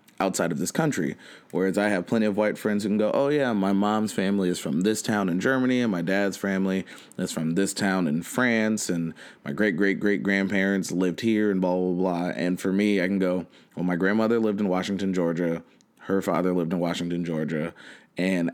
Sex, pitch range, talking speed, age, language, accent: male, 90-105 Hz, 215 wpm, 20-39, English, American